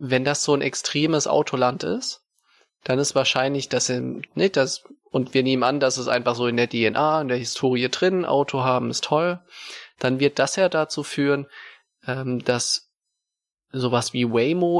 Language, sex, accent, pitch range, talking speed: German, male, German, 125-155 Hz, 185 wpm